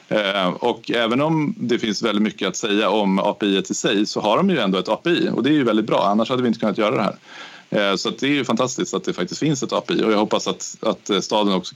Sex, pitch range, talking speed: male, 95-115 Hz, 280 wpm